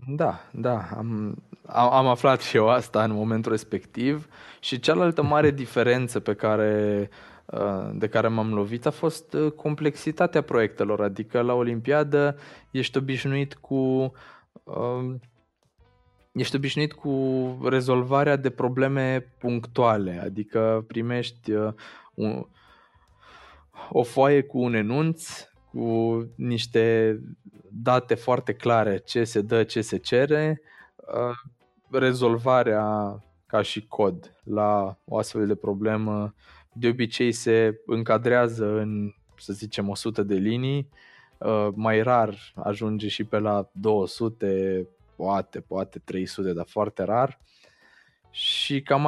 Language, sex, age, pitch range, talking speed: Romanian, male, 20-39, 110-130 Hz, 115 wpm